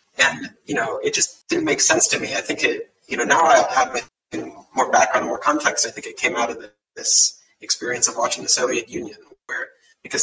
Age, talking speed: 30-49, 215 wpm